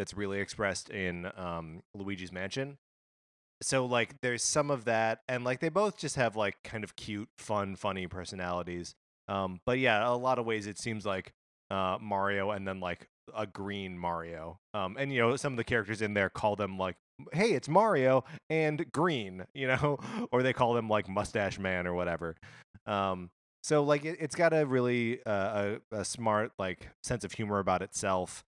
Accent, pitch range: American, 90-120 Hz